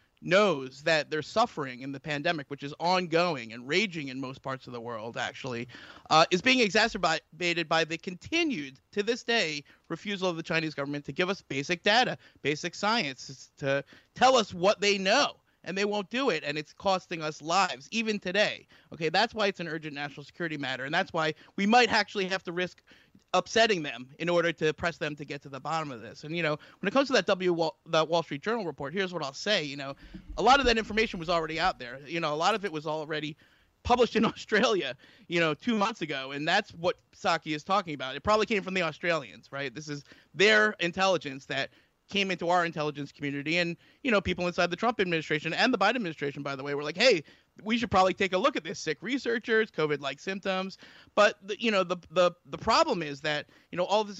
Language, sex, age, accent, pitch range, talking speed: English, male, 30-49, American, 150-200 Hz, 225 wpm